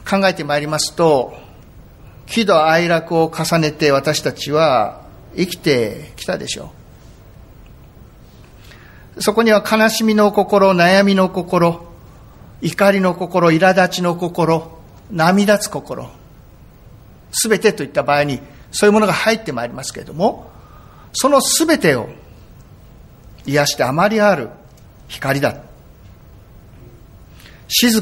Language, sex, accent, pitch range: Japanese, male, native, 145-210 Hz